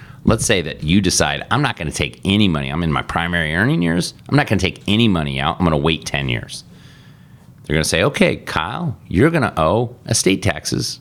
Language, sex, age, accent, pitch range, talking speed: English, male, 30-49, American, 85-120 Hz, 215 wpm